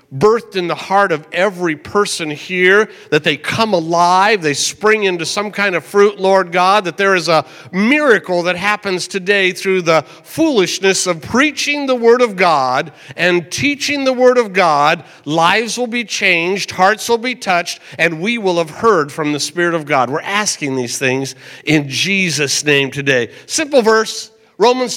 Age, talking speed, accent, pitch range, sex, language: 50-69, 175 wpm, American, 155-215 Hz, male, English